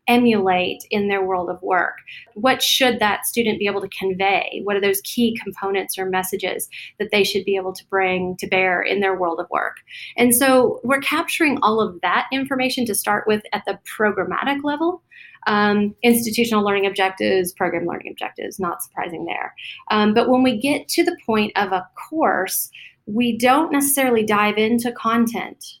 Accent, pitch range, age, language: American, 195-245 Hz, 30-49, English